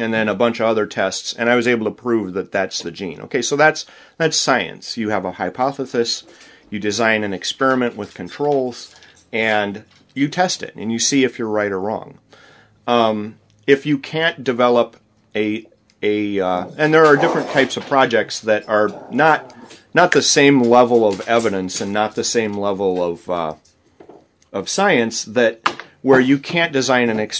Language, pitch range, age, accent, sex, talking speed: English, 95-125 Hz, 30-49, American, male, 180 wpm